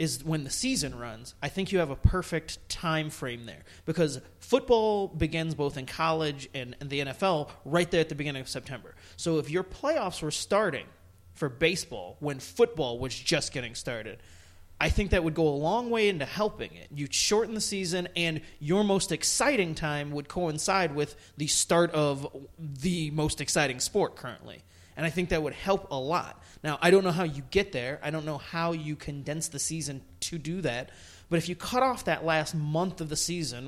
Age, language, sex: 30-49, English, male